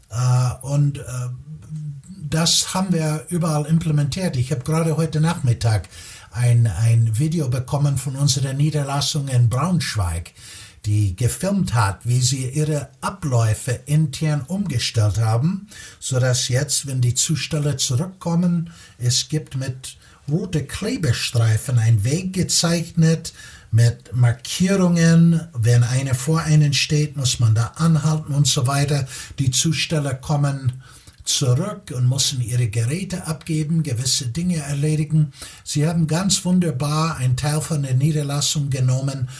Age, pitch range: 60-79, 125-155 Hz